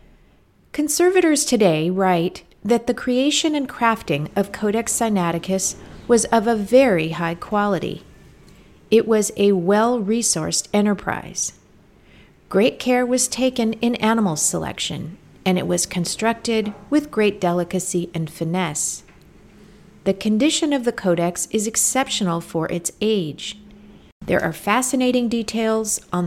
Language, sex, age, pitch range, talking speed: English, female, 40-59, 185-235 Hz, 120 wpm